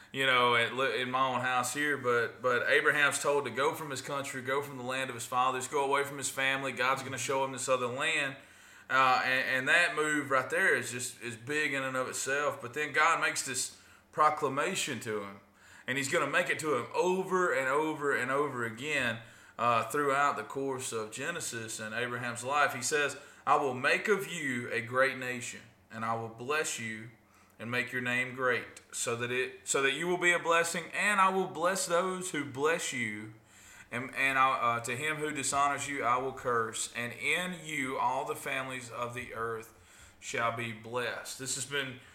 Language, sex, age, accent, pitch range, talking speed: English, male, 20-39, American, 115-145 Hz, 210 wpm